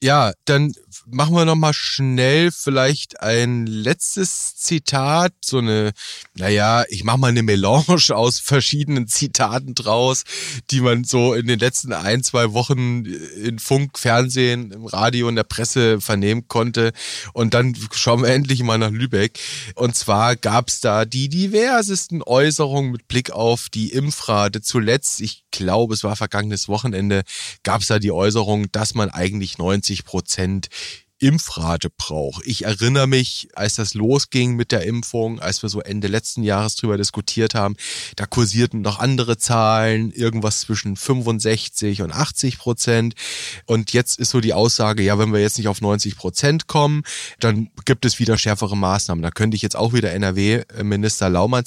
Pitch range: 105-125 Hz